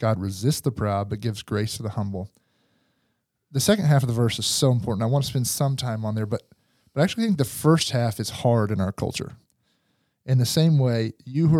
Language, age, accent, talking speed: English, 40-59, American, 240 wpm